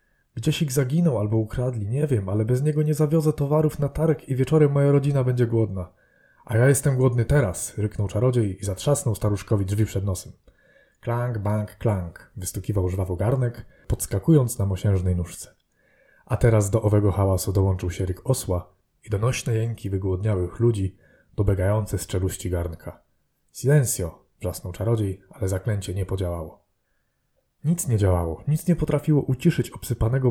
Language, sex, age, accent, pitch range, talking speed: Polish, male, 30-49, native, 95-125 Hz, 150 wpm